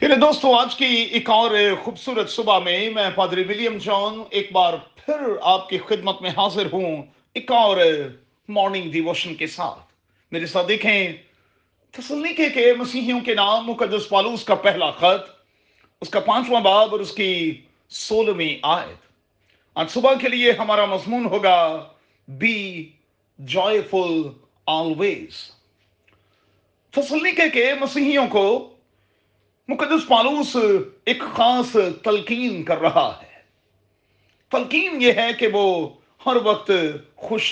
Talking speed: 125 wpm